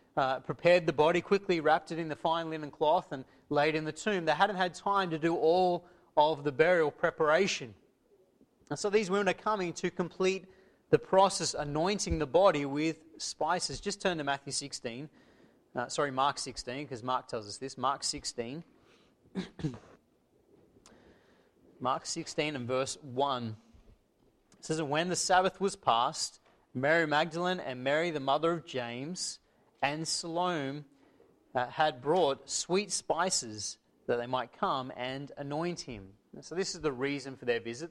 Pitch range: 140-185 Hz